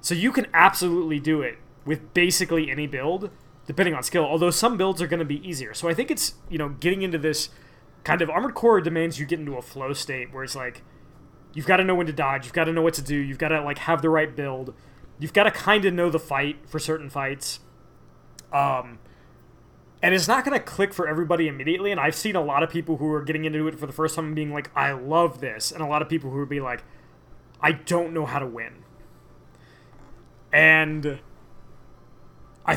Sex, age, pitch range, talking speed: male, 20-39, 135-165 Hz, 230 wpm